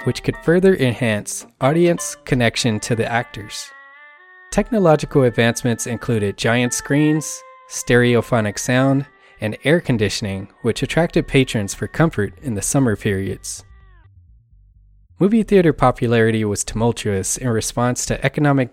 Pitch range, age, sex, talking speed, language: 110-140 Hz, 20-39, male, 120 wpm, English